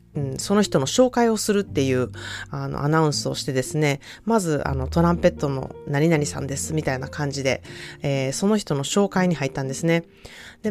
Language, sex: Japanese, female